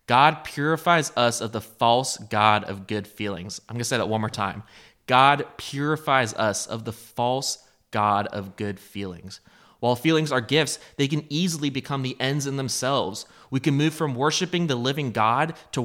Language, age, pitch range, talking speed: English, 20-39, 110-140 Hz, 185 wpm